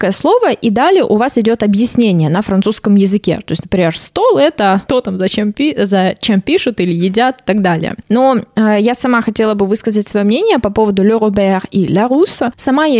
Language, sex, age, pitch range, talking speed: Russian, female, 20-39, 195-245 Hz, 195 wpm